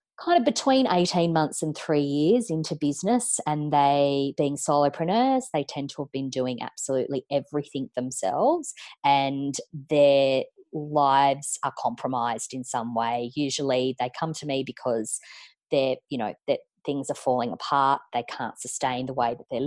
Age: 20-39